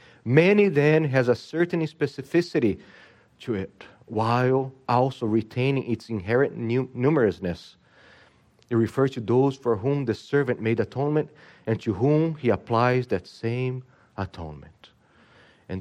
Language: English